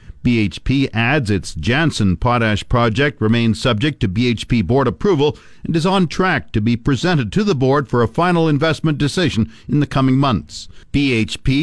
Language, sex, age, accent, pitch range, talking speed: English, male, 50-69, American, 115-155 Hz, 165 wpm